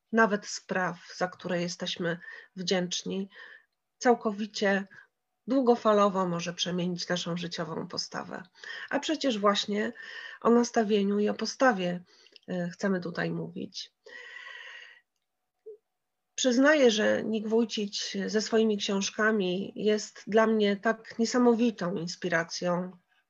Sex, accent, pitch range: female, native, 190-240 Hz